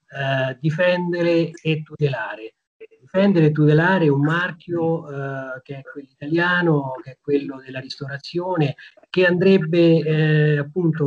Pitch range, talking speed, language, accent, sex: 135-160 Hz, 120 wpm, Italian, native, male